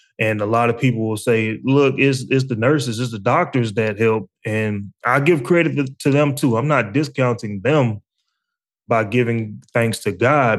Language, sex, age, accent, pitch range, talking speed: English, male, 20-39, American, 110-135 Hz, 185 wpm